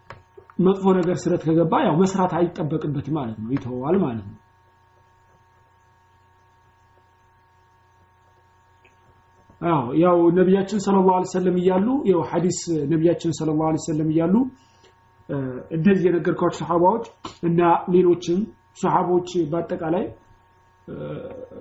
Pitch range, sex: 115-185 Hz, male